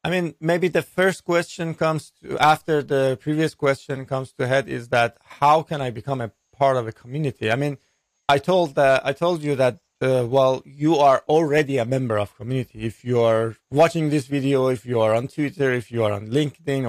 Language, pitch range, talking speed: English, 130-155 Hz, 215 wpm